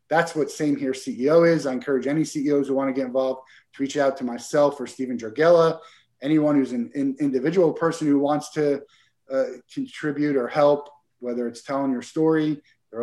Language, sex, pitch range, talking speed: English, male, 125-145 Hz, 195 wpm